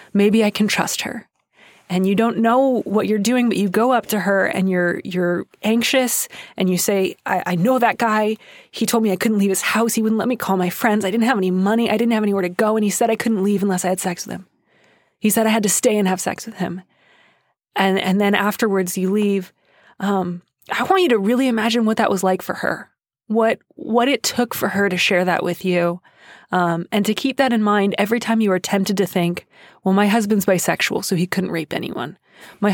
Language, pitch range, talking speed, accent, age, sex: English, 185-225 Hz, 245 wpm, American, 20-39, female